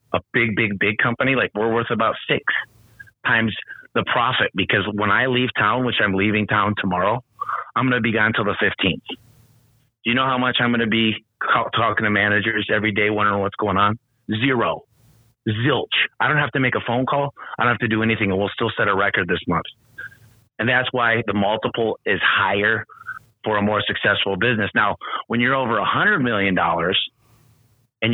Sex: male